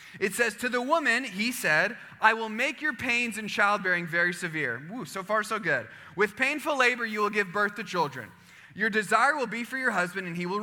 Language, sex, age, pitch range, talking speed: English, male, 20-39, 160-230 Hz, 225 wpm